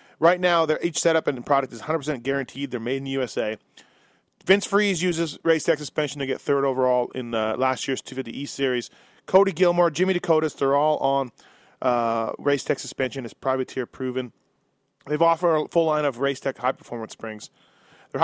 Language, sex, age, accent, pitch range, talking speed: English, male, 30-49, American, 130-165 Hz, 175 wpm